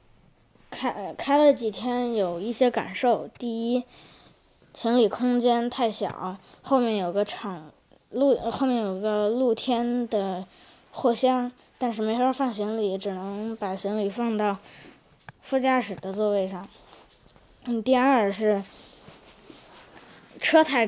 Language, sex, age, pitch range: Chinese, female, 20-39, 200-245 Hz